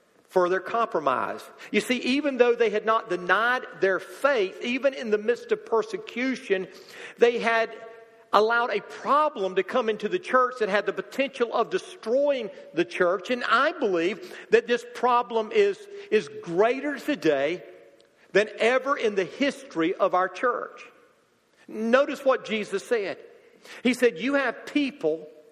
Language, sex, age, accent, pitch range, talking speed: English, male, 50-69, American, 220-290 Hz, 150 wpm